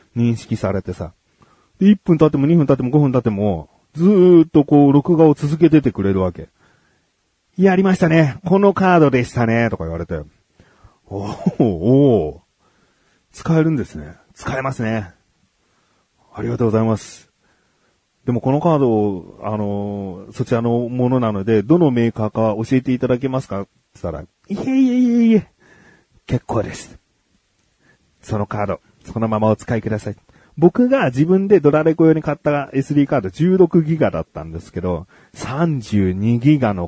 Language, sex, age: Japanese, male, 30-49